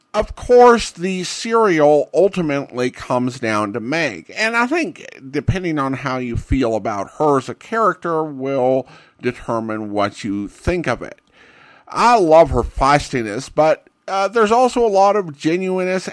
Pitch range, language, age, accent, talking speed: 125-185 Hz, English, 50-69, American, 155 wpm